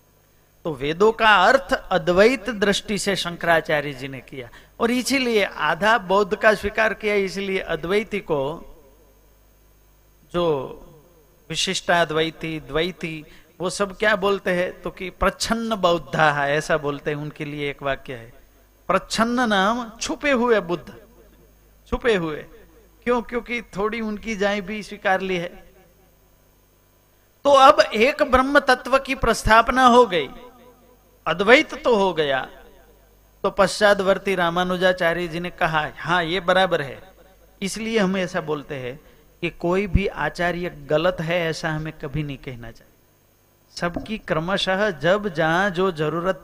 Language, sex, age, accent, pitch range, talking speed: Hindi, male, 50-69, native, 160-215 Hz, 135 wpm